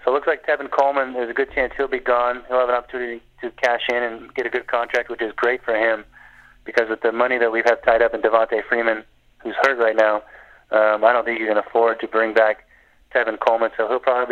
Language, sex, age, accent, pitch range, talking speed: English, male, 30-49, American, 115-135 Hz, 255 wpm